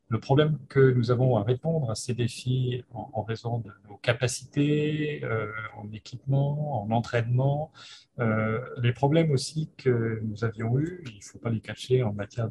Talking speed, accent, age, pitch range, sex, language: 165 wpm, French, 40-59, 110-135 Hz, male, French